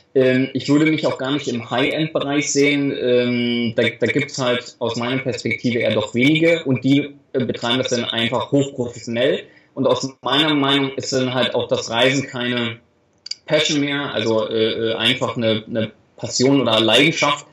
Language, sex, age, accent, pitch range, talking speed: German, male, 20-39, German, 120-140 Hz, 165 wpm